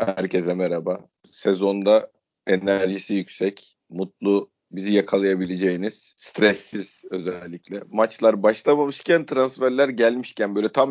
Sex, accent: male, native